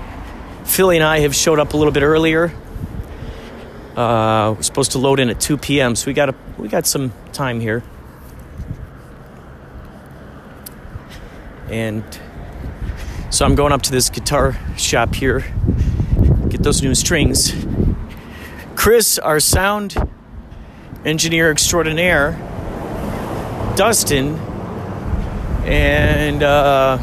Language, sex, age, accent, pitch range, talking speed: English, male, 40-59, American, 90-140 Hz, 110 wpm